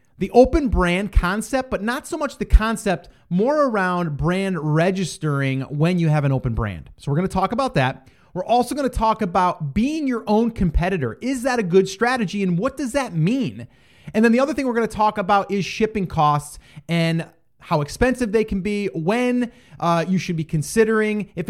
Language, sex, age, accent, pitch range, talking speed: English, male, 30-49, American, 150-215 Hz, 205 wpm